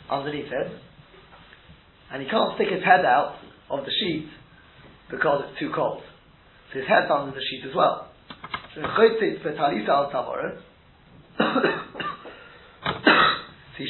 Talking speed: 115 wpm